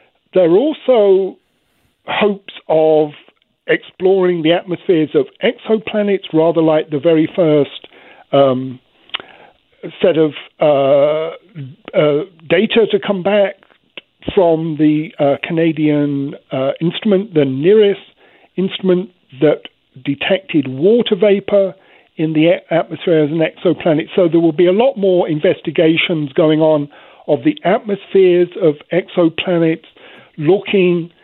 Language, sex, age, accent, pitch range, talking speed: English, male, 50-69, British, 150-190 Hz, 115 wpm